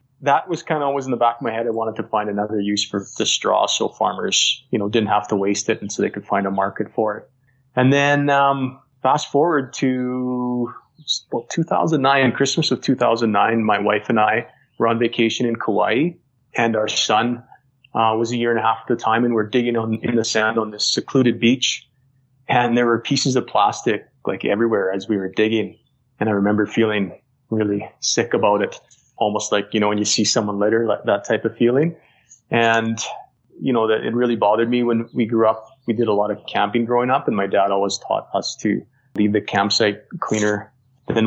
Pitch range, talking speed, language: 105-125 Hz, 220 wpm, English